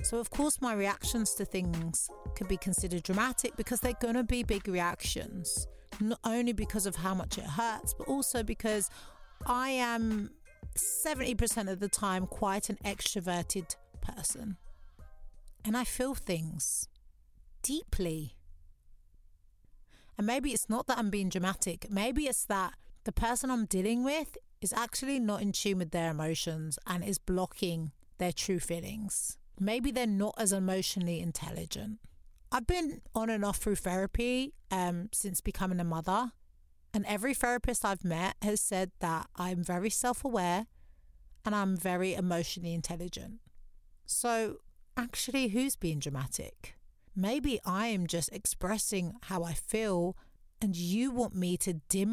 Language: English